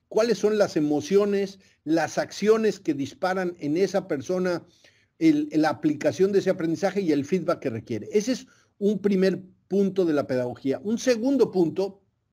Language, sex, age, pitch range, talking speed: Spanish, male, 50-69, 150-195 Hz, 155 wpm